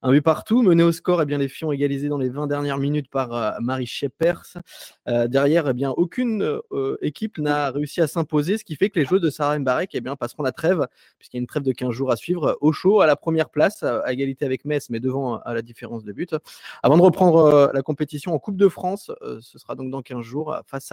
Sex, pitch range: male, 140-175 Hz